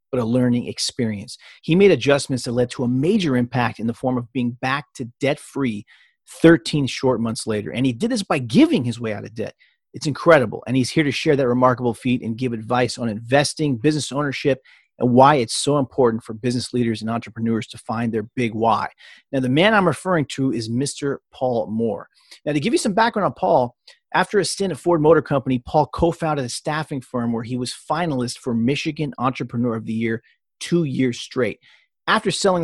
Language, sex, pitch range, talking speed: English, male, 120-155 Hz, 210 wpm